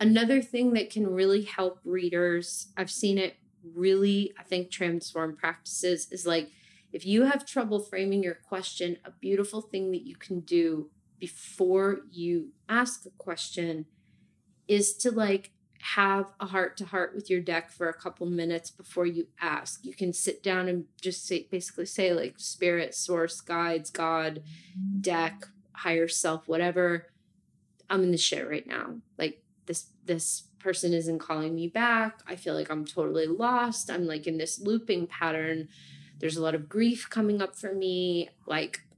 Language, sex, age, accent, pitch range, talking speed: English, female, 30-49, American, 170-205 Hz, 165 wpm